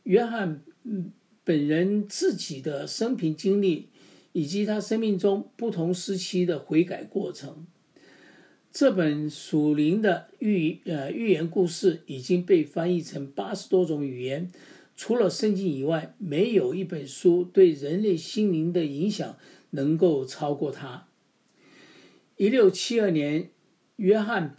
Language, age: English, 50-69